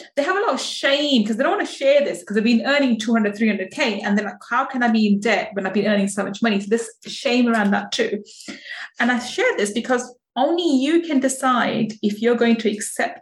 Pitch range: 205-255 Hz